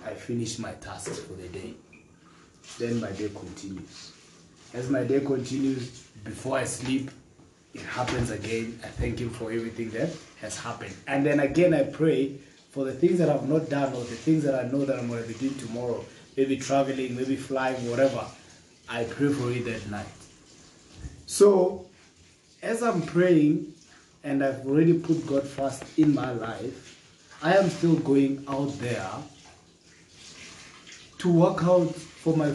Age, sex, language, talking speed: 20-39, male, Swahili, 160 wpm